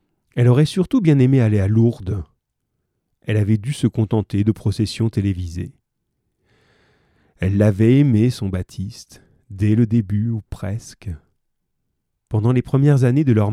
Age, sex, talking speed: 40-59, male, 140 wpm